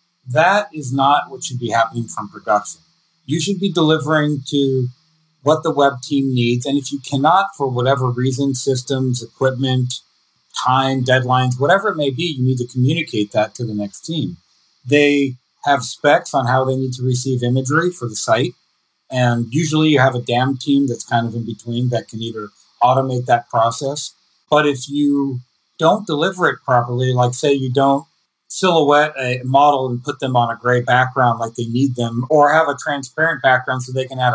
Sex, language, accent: male, English, American